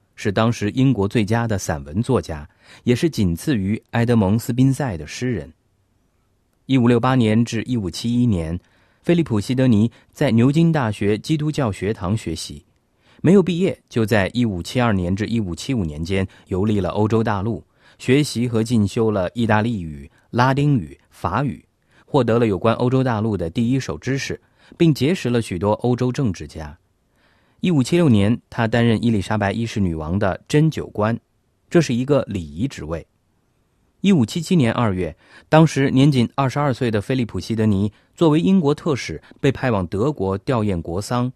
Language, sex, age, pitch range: Chinese, male, 30-49, 95-130 Hz